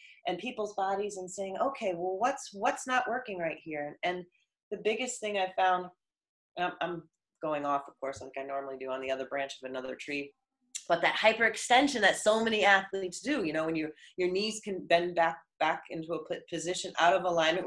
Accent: American